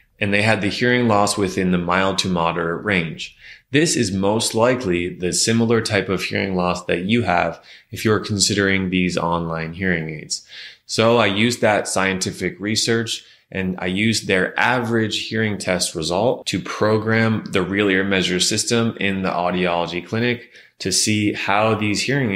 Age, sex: 20-39, male